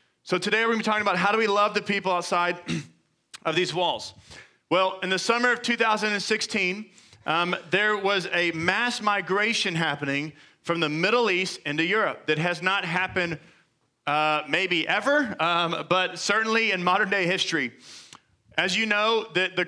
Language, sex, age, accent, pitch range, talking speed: English, male, 30-49, American, 175-205 Hz, 165 wpm